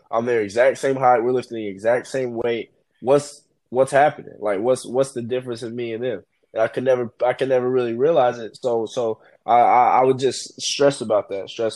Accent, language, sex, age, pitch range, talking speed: American, English, male, 20-39, 105-135 Hz, 220 wpm